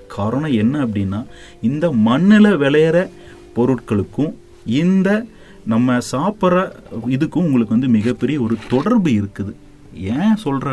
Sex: male